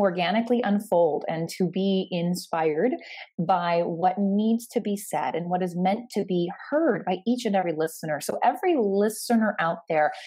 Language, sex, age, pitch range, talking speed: English, female, 20-39, 170-225 Hz, 170 wpm